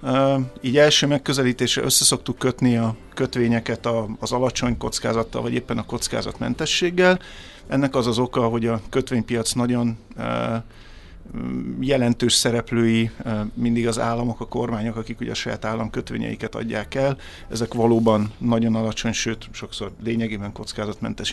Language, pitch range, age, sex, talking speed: Hungarian, 115-125 Hz, 50-69, male, 130 wpm